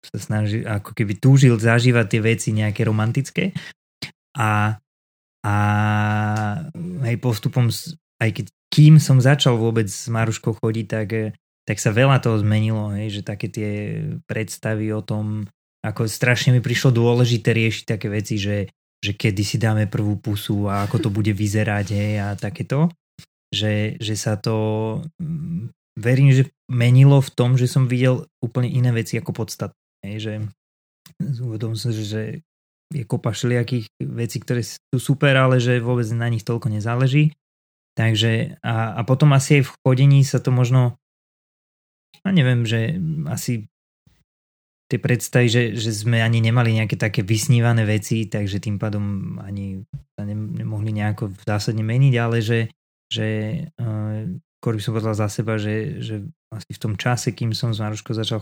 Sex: male